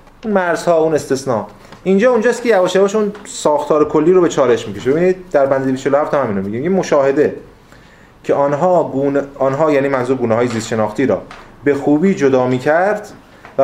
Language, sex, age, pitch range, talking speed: Persian, male, 30-49, 130-180 Hz, 165 wpm